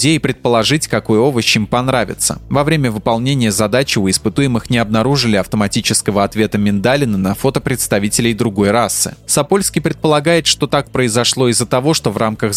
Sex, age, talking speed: male, 20-39, 155 wpm